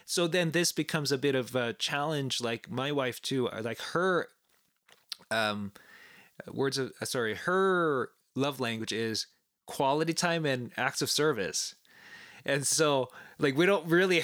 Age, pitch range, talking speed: 20-39, 125-160 Hz, 150 wpm